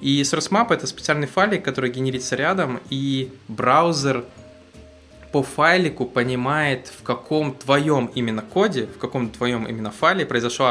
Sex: male